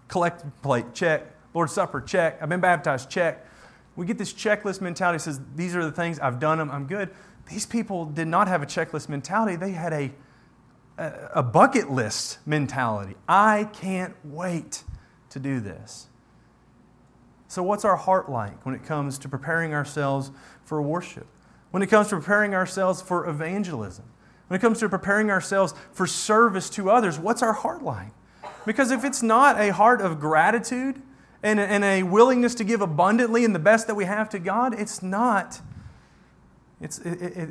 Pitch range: 145-205 Hz